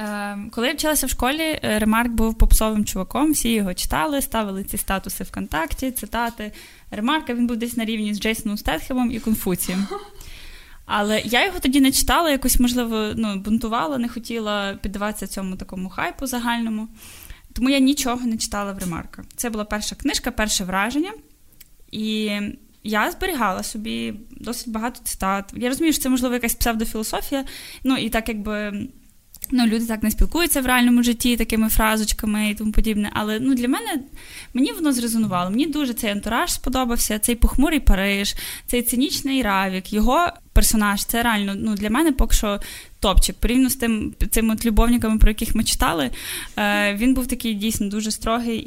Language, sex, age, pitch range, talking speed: Ukrainian, female, 10-29, 210-255 Hz, 160 wpm